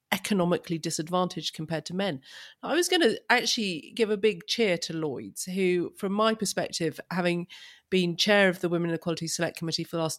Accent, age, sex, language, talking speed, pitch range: British, 40-59, female, English, 195 wpm, 165-205 Hz